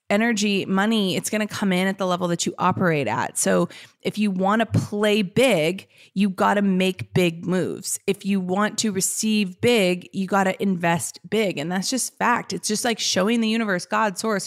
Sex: female